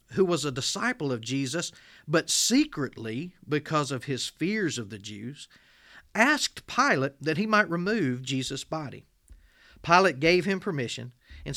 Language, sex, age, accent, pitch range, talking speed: English, male, 40-59, American, 120-170 Hz, 145 wpm